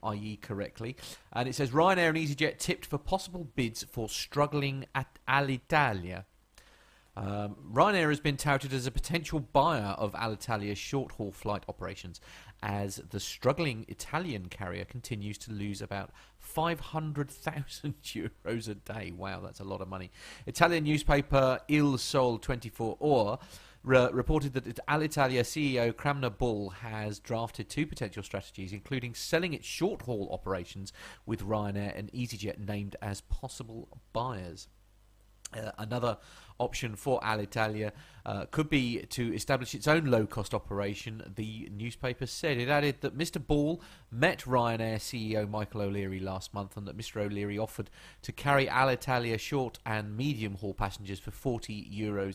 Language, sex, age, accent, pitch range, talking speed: English, male, 40-59, British, 100-135 Hz, 140 wpm